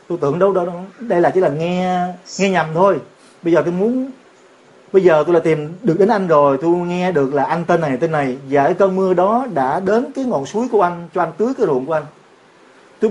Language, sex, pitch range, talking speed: Vietnamese, male, 155-195 Hz, 255 wpm